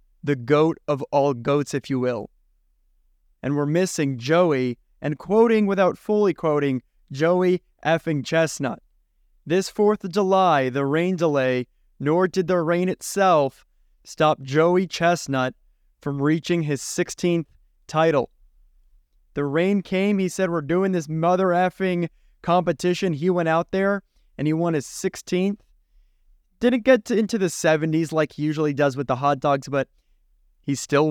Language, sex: English, male